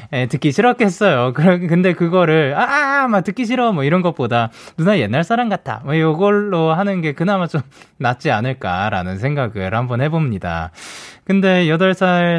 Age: 20-39